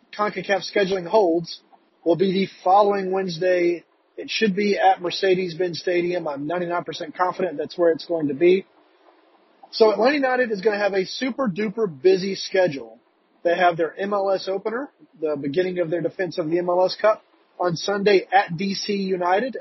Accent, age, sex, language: American, 30-49, male, English